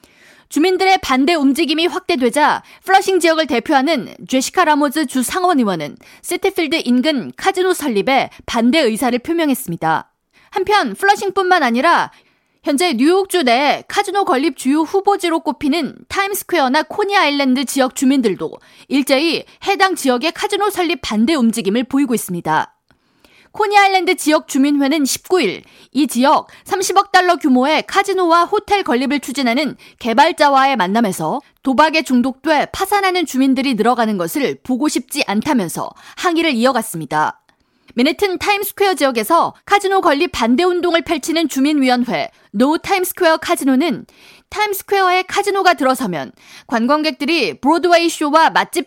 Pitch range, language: 260-365 Hz, Korean